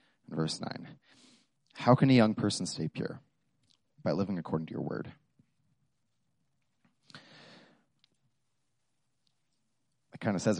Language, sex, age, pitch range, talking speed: English, male, 30-49, 90-110 Hz, 110 wpm